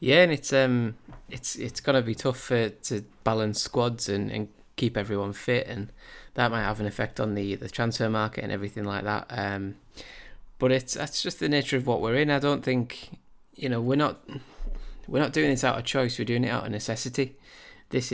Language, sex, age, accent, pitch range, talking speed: English, male, 20-39, British, 110-130 Hz, 220 wpm